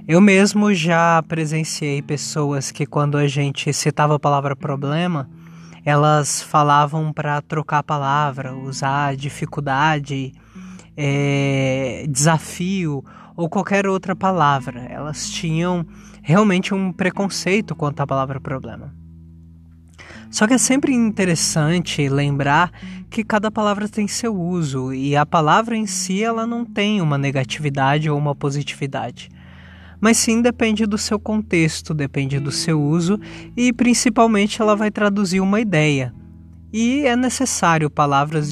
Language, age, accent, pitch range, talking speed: Portuguese, 20-39, Brazilian, 140-195 Hz, 125 wpm